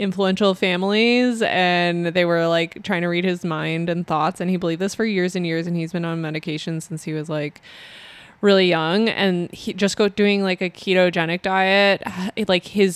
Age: 20-39